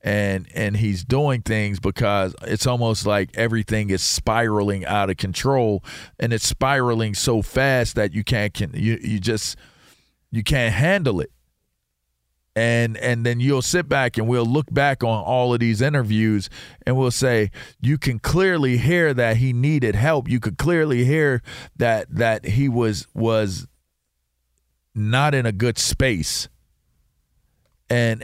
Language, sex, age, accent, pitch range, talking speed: English, male, 40-59, American, 100-125 Hz, 155 wpm